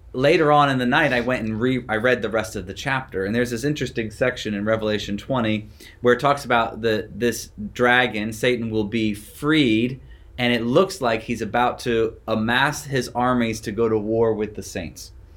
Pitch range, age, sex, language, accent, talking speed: 105-125 Hz, 30-49, male, English, American, 205 wpm